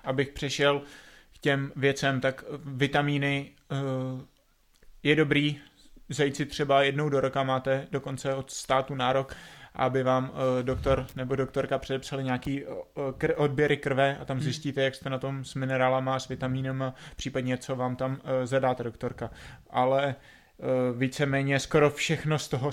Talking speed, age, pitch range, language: 135 wpm, 20-39, 130-140 Hz, Czech